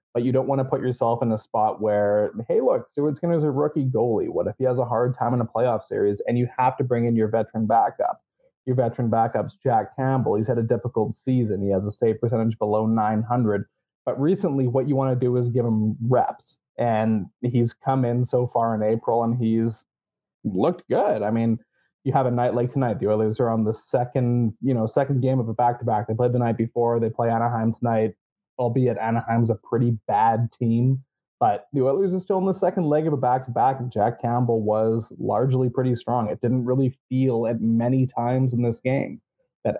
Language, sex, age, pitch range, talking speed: English, male, 20-39, 115-130 Hz, 215 wpm